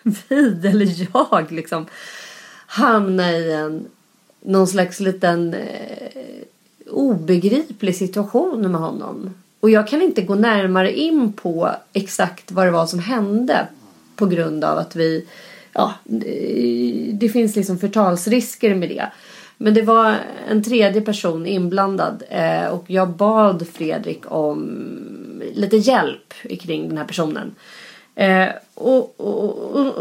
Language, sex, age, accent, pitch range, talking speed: Swedish, female, 30-49, native, 175-225 Hz, 125 wpm